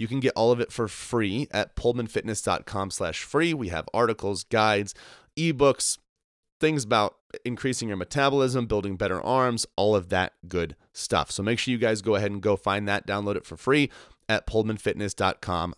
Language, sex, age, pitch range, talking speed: English, male, 30-49, 95-125 Hz, 175 wpm